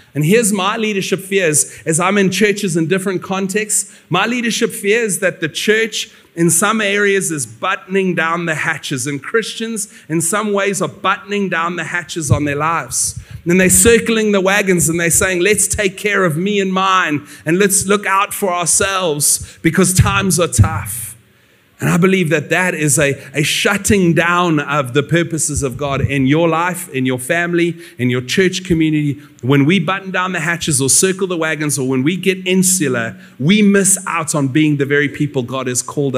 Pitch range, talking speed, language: 145-195 Hz, 190 wpm, English